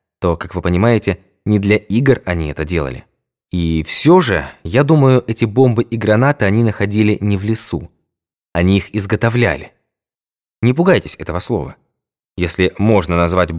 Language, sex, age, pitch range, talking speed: Russian, male, 20-39, 95-135 Hz, 150 wpm